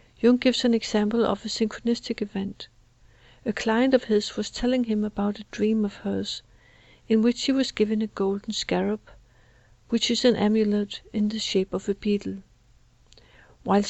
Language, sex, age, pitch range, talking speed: English, female, 60-79, 205-235 Hz, 170 wpm